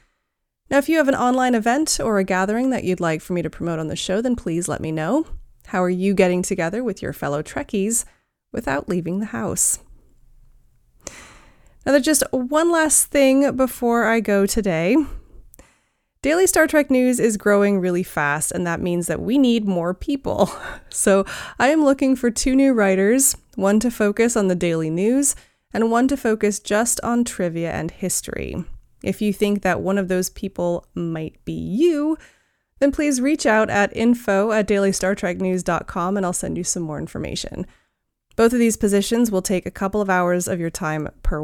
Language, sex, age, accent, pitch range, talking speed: English, female, 20-39, American, 180-245 Hz, 185 wpm